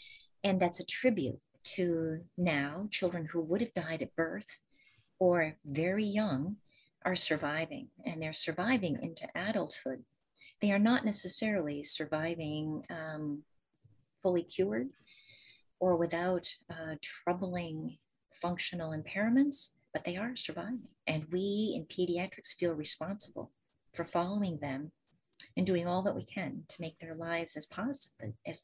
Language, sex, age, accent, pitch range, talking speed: English, female, 40-59, American, 155-200 Hz, 130 wpm